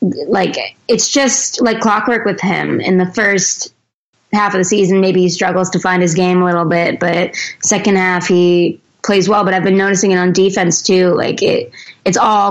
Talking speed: 200 wpm